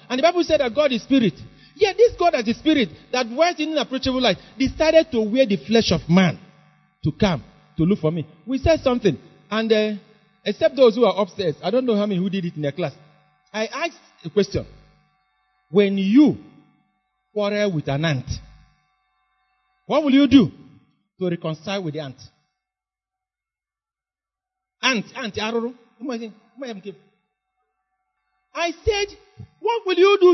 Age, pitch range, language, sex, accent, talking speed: 40-59, 180-280 Hz, English, male, Nigerian, 175 wpm